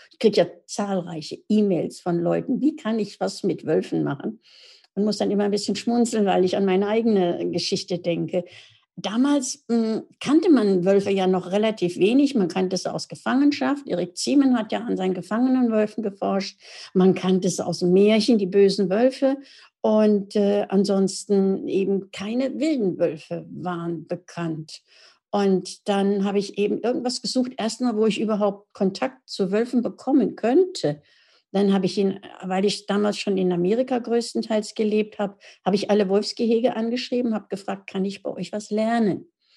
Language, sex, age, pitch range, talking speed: German, female, 60-79, 190-225 Hz, 165 wpm